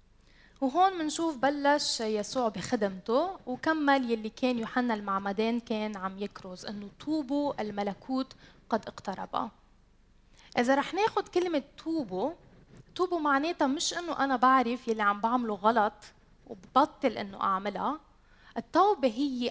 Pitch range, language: 210-285 Hz, Arabic